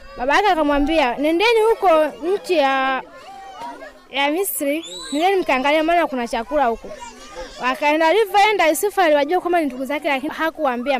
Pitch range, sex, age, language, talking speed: 270-345 Hz, female, 20-39, Swahili, 115 wpm